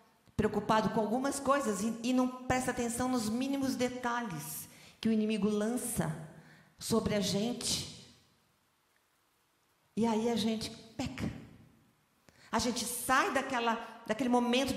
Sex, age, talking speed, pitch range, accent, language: female, 40-59, 120 wpm, 195-245 Hz, Brazilian, Portuguese